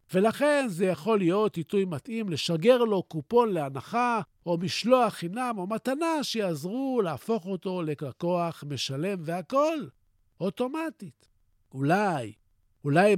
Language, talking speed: Hebrew, 110 wpm